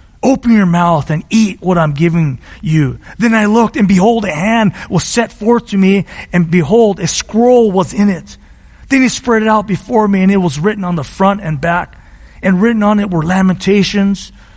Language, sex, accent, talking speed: English, male, American, 205 wpm